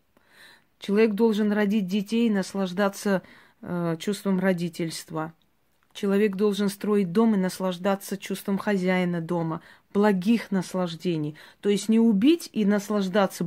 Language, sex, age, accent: Russian, female, 30-49, native